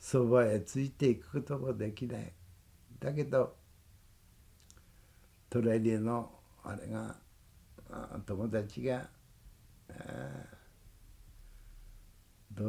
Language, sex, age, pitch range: Japanese, male, 60-79, 95-120 Hz